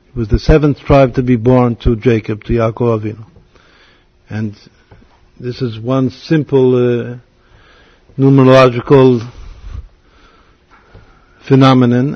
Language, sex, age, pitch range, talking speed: English, male, 50-69, 120-145 Hz, 100 wpm